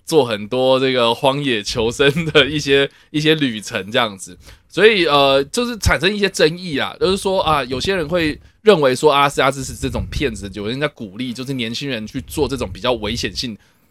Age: 20-39